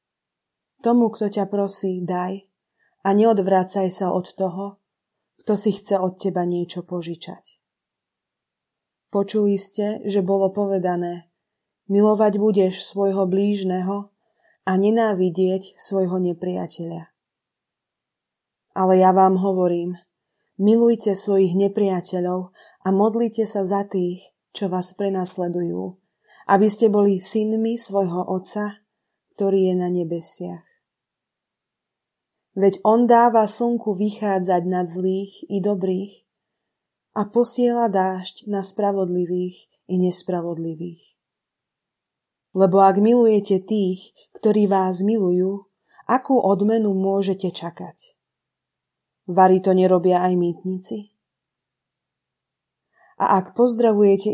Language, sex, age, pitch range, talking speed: Slovak, female, 20-39, 185-210 Hz, 100 wpm